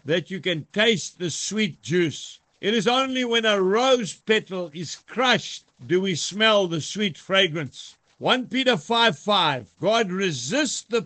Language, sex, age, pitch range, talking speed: English, male, 60-79, 175-225 Hz, 150 wpm